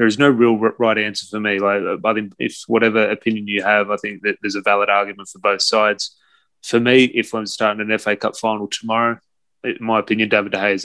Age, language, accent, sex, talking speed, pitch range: 20-39, English, Australian, male, 240 wpm, 100-110 Hz